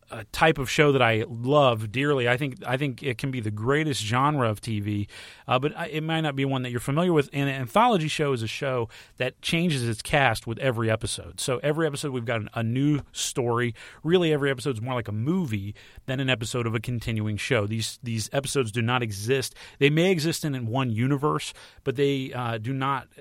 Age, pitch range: 40-59, 110-140 Hz